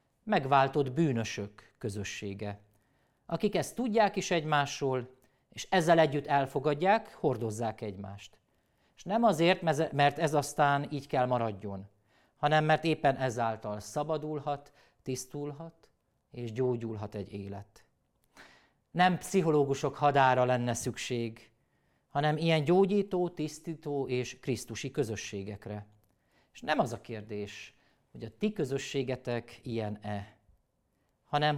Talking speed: 105 wpm